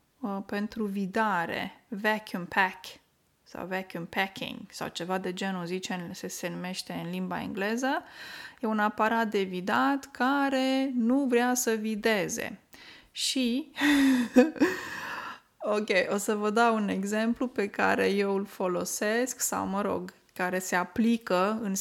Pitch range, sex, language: 200-245 Hz, female, Romanian